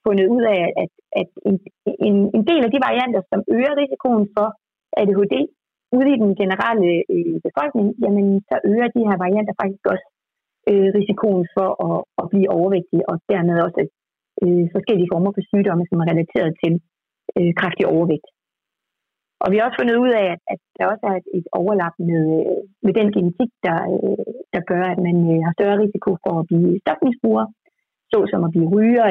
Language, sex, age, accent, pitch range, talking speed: Danish, female, 30-49, native, 180-240 Hz, 165 wpm